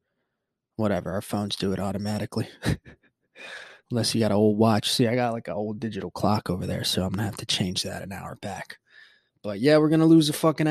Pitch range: 110-140 Hz